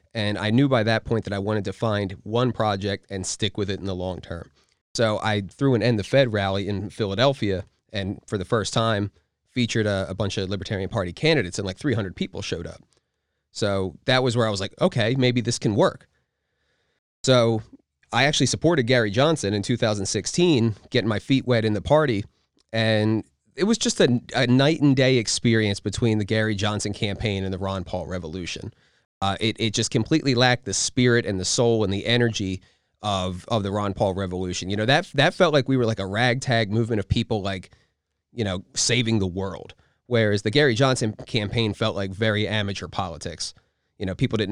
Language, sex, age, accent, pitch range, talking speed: English, male, 30-49, American, 100-120 Hz, 205 wpm